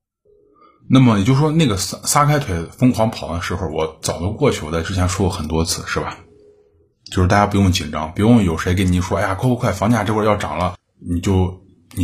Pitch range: 85-105 Hz